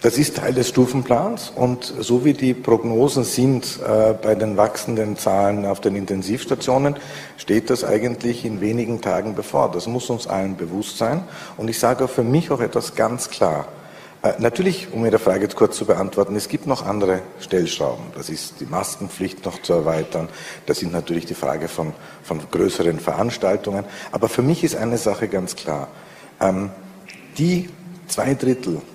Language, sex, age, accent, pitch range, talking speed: German, male, 50-69, Austrian, 100-130 Hz, 175 wpm